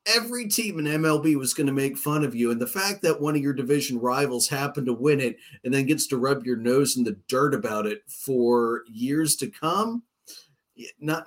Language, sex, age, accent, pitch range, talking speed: English, male, 40-59, American, 125-155 Hz, 220 wpm